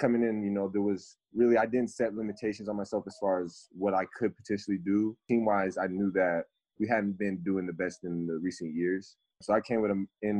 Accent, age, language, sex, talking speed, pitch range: American, 20-39, English, male, 235 wpm, 95-105 Hz